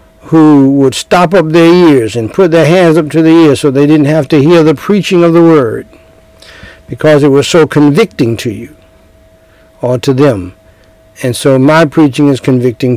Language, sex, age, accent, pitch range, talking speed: English, male, 60-79, American, 125-160 Hz, 190 wpm